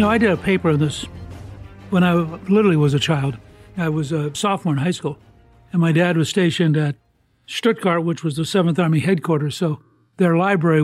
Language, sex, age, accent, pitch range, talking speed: English, male, 60-79, American, 150-190 Hz, 205 wpm